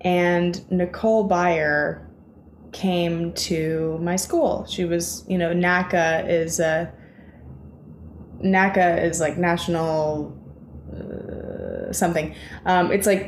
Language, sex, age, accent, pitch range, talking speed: English, female, 20-39, American, 160-190 Hz, 105 wpm